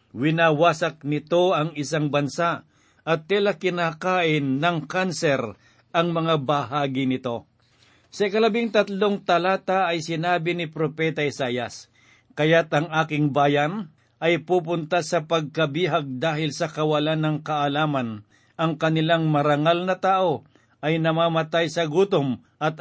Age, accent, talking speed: 50-69, native, 120 wpm